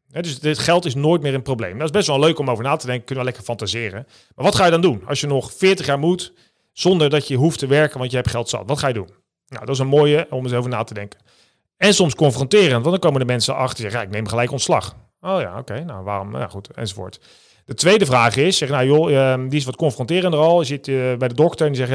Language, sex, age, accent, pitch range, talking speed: Dutch, male, 40-59, Dutch, 115-155 Hz, 285 wpm